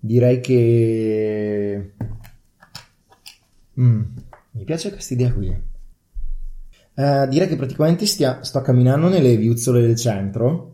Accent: native